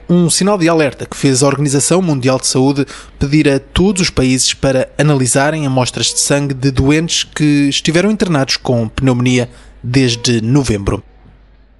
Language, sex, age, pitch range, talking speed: Portuguese, male, 20-39, 135-170 Hz, 155 wpm